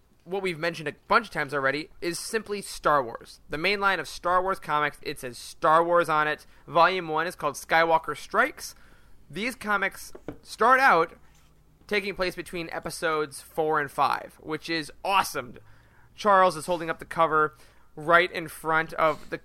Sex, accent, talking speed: male, American, 175 wpm